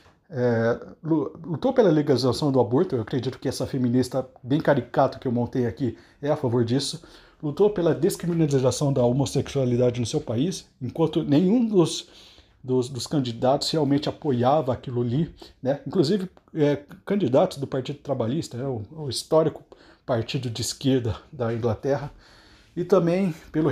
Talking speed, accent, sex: 145 wpm, Brazilian, male